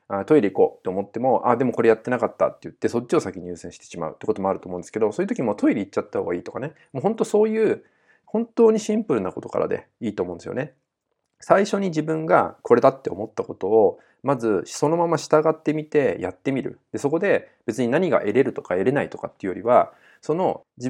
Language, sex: Japanese, male